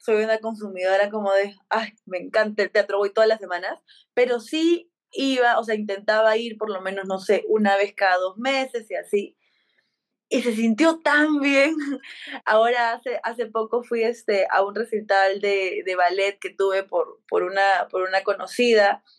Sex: female